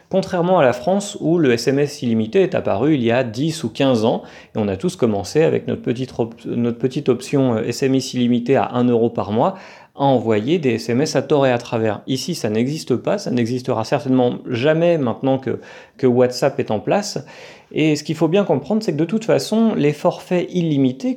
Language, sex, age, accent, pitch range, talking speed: French, male, 40-59, French, 125-175 Hz, 205 wpm